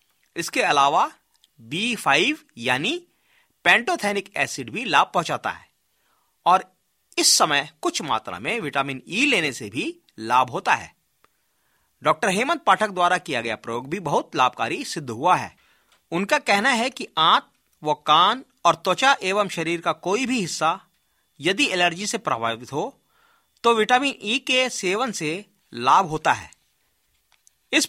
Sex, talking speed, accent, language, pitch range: male, 150 wpm, native, Hindi, 145-235 Hz